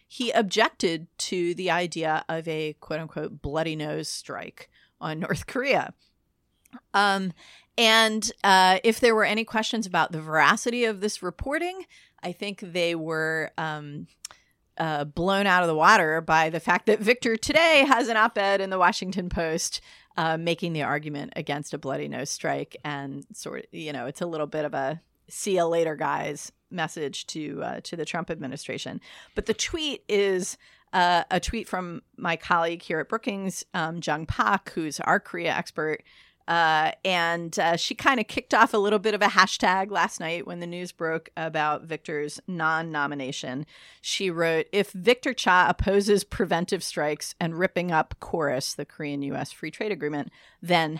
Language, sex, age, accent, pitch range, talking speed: English, female, 30-49, American, 155-200 Hz, 170 wpm